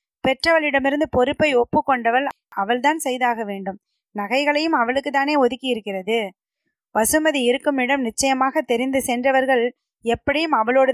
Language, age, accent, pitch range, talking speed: Tamil, 20-39, native, 230-290 Hz, 105 wpm